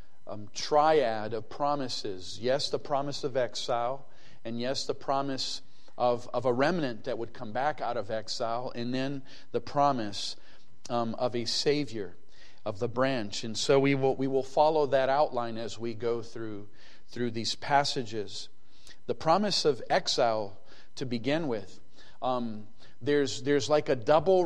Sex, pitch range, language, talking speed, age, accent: male, 120-150 Hz, English, 155 wpm, 40-59, American